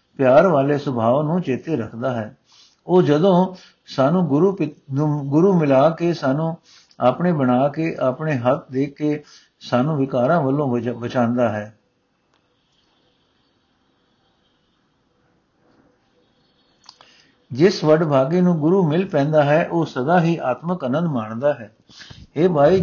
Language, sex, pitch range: Punjabi, male, 130-170 Hz